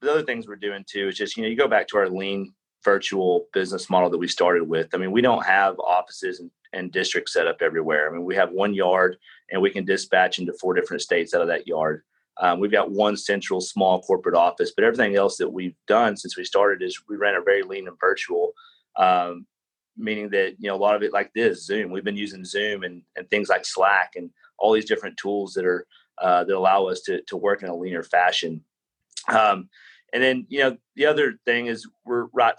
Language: English